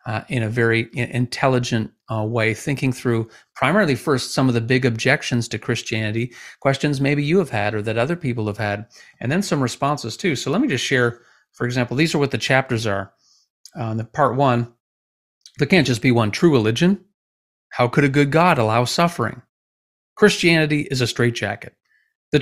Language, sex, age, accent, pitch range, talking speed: English, male, 40-59, American, 115-150 Hz, 185 wpm